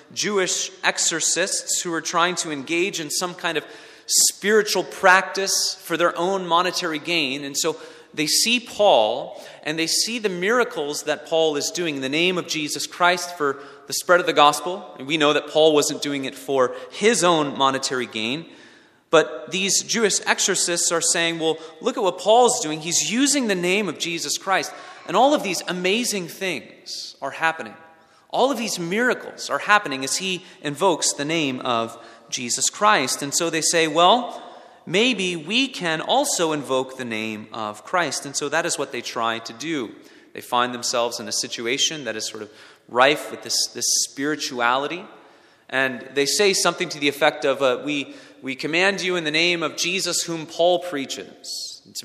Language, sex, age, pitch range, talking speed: English, male, 30-49, 140-185 Hz, 180 wpm